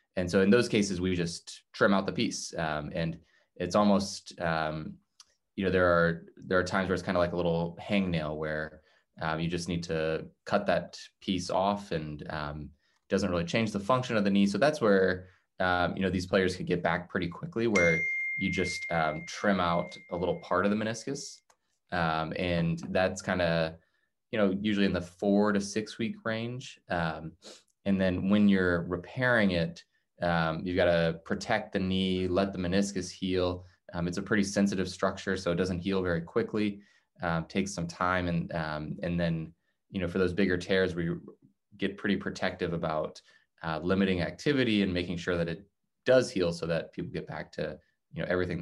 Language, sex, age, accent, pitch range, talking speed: English, male, 20-39, American, 85-100 Hz, 195 wpm